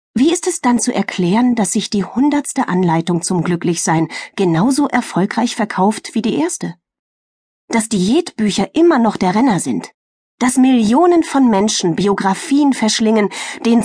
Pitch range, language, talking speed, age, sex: 180-245 Hz, German, 145 wpm, 30-49, female